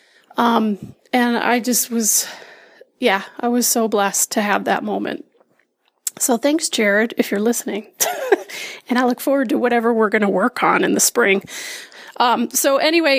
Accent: American